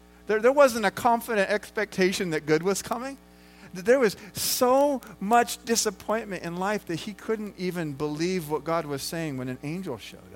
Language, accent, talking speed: English, American, 175 wpm